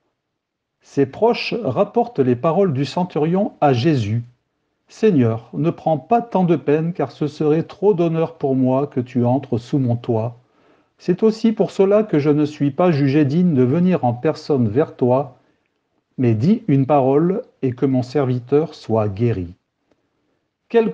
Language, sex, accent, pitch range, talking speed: French, male, French, 130-170 Hz, 165 wpm